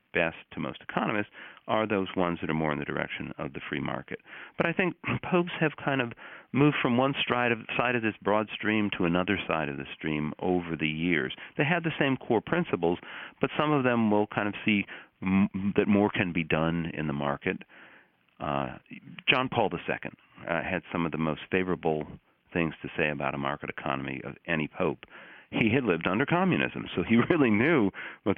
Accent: American